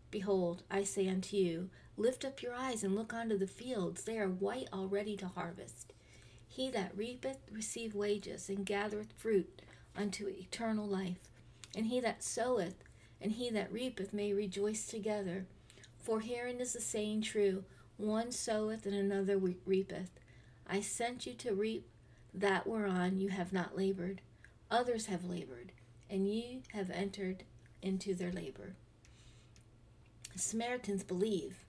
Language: English